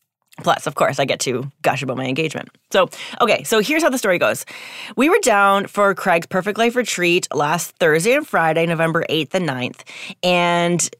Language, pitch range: English, 160-215 Hz